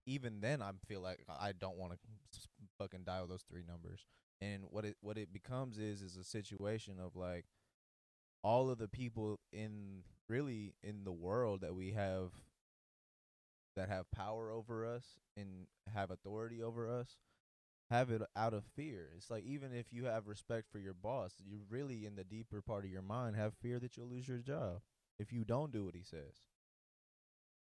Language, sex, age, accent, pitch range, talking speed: English, male, 20-39, American, 95-115 Hz, 190 wpm